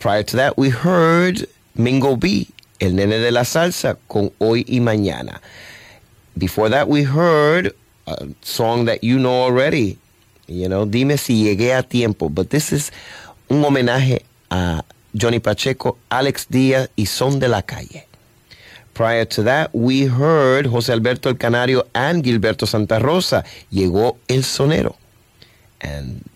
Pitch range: 95-125 Hz